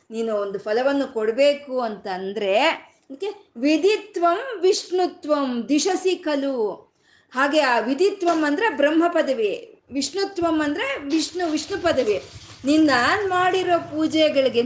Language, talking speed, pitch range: Kannada, 95 wpm, 240-330 Hz